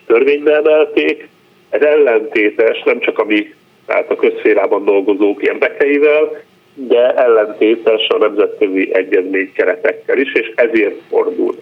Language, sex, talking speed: Hungarian, male, 100 wpm